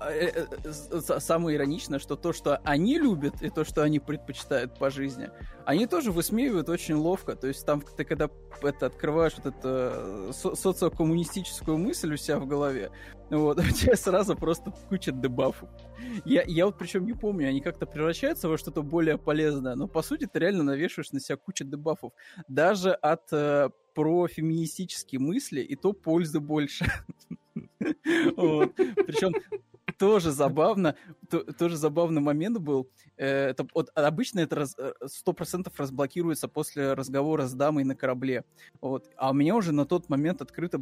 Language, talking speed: Russian, 145 wpm